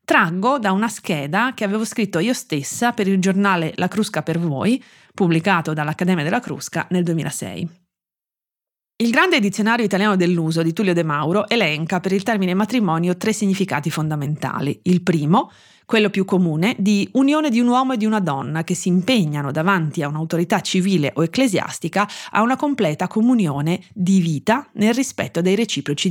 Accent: native